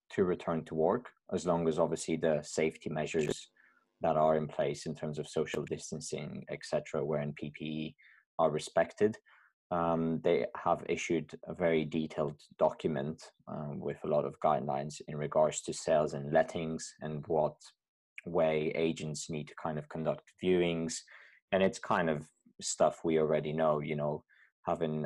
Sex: male